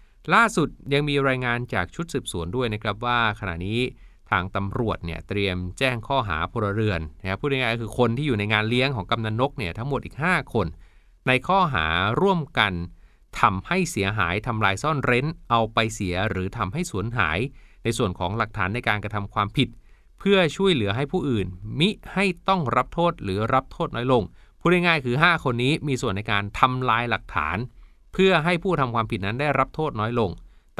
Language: Thai